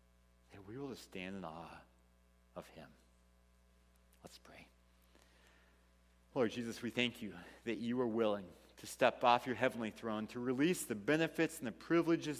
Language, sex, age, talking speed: English, male, 40-59, 160 wpm